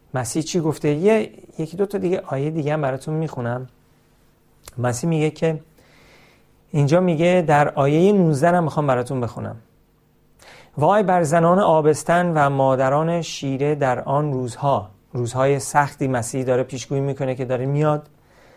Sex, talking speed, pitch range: male, 140 wpm, 130-155 Hz